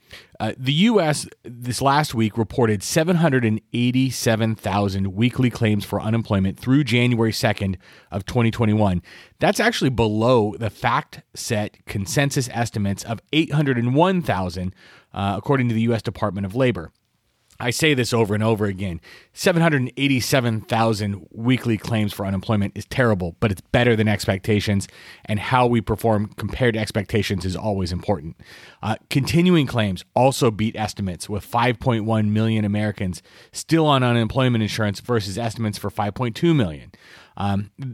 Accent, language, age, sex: American, English, 30-49, male